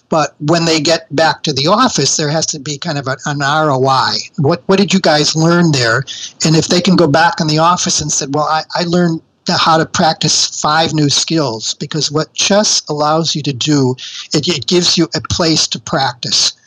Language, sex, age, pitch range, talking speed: English, male, 50-69, 145-170 Hz, 220 wpm